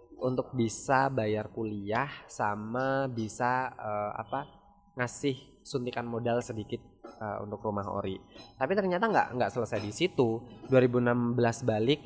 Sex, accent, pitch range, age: male, native, 115-140 Hz, 20-39